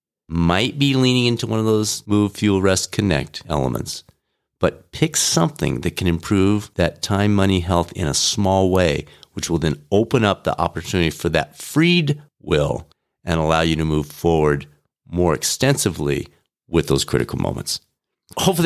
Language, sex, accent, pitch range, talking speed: English, male, American, 85-120 Hz, 160 wpm